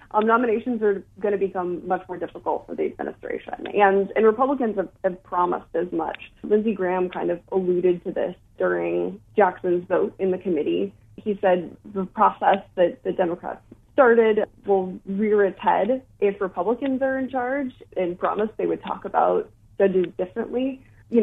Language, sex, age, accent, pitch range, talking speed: English, female, 20-39, American, 180-220 Hz, 165 wpm